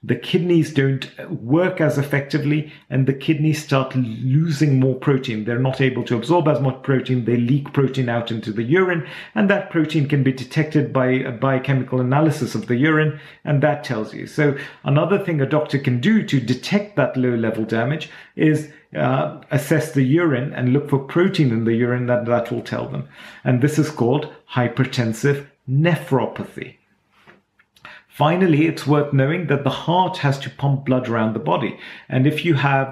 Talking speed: 180 wpm